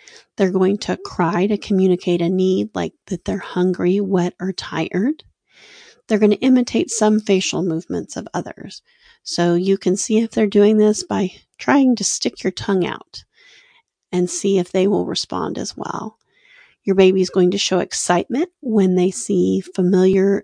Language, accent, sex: English, American, female